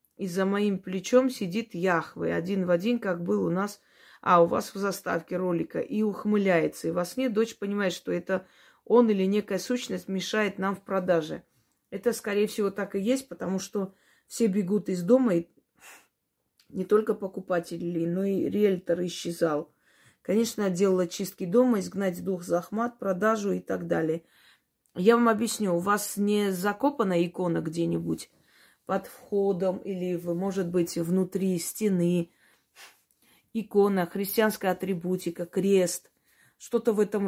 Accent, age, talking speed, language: native, 30-49, 150 wpm, Russian